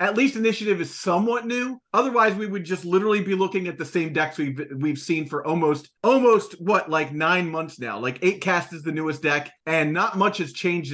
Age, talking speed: 30-49, 220 wpm